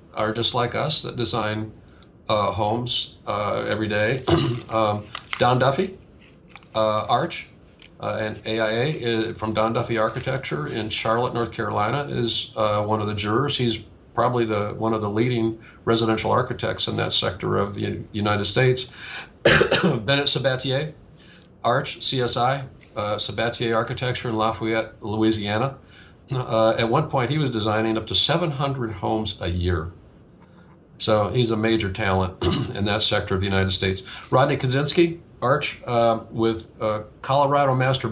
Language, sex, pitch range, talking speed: English, male, 105-125 Hz, 150 wpm